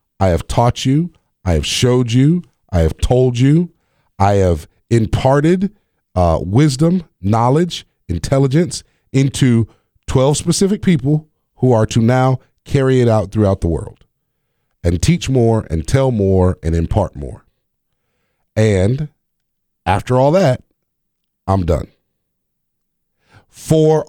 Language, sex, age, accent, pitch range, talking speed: English, male, 40-59, American, 100-145 Hz, 120 wpm